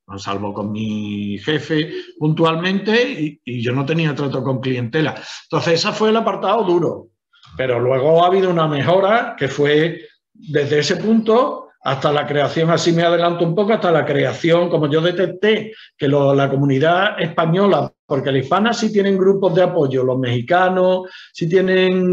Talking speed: 165 wpm